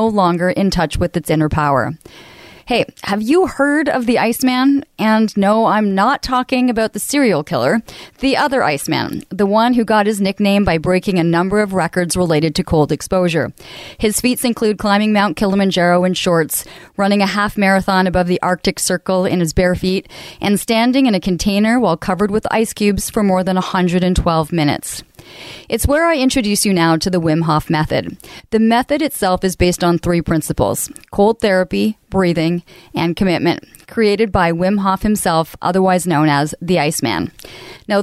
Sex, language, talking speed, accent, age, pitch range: female, English, 180 wpm, American, 30-49, 180-220 Hz